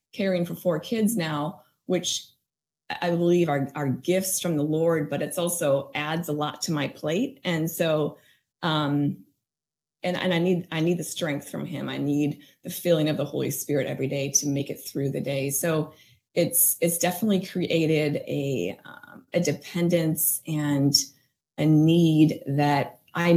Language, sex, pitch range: English, female, 150-180 Hz